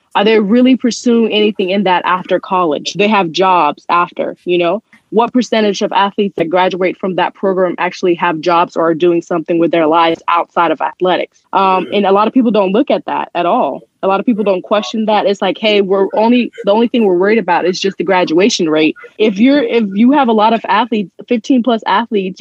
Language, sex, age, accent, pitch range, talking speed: English, female, 20-39, American, 180-220 Hz, 225 wpm